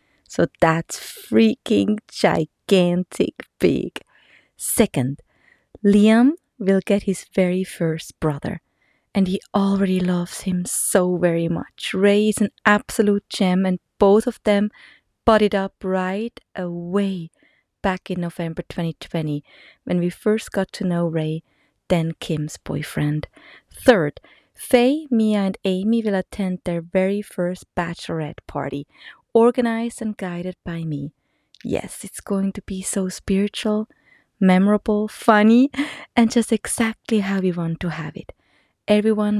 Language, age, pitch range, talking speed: English, 30-49, 165-210 Hz, 130 wpm